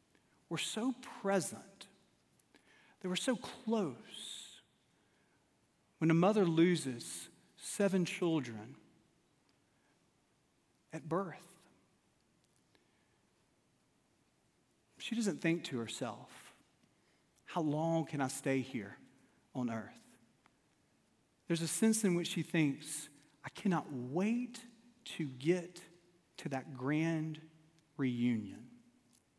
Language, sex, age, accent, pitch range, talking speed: English, male, 40-59, American, 135-190 Hz, 90 wpm